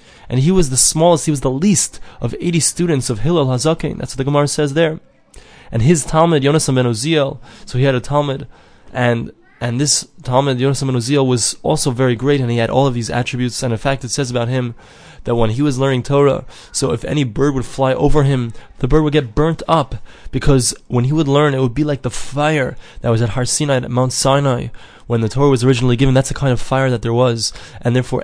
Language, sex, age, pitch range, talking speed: English, male, 20-39, 120-140 Hz, 235 wpm